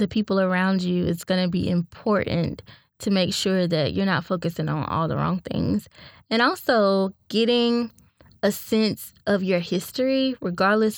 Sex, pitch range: female, 180-215 Hz